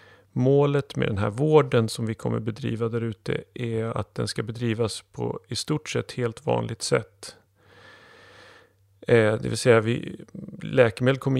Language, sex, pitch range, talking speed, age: English, male, 110-125 Hz, 160 wpm, 40-59